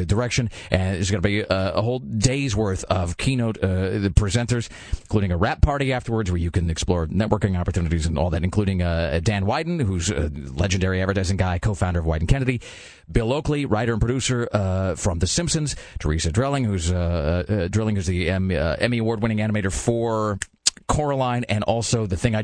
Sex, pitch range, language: male, 95-120 Hz, English